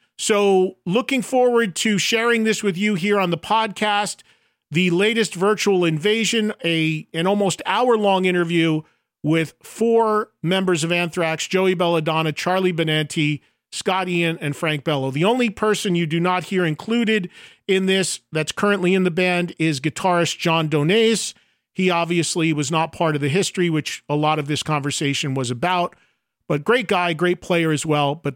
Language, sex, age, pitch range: English, male, 40-59, 160-215 Hz